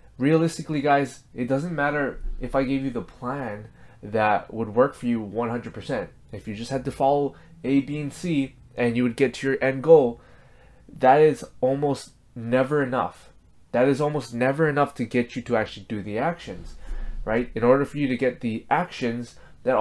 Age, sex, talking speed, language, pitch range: 20-39, male, 190 wpm, English, 110-140 Hz